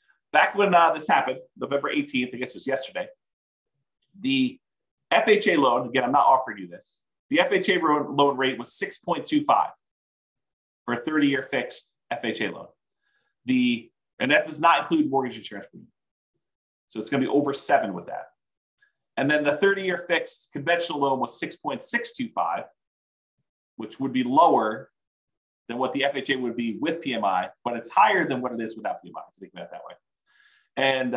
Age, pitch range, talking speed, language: 40-59, 115-165 Hz, 170 wpm, English